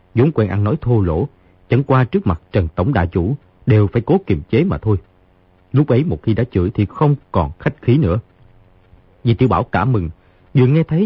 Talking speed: 220 wpm